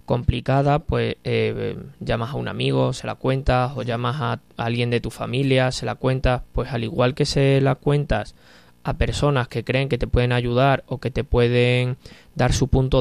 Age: 20-39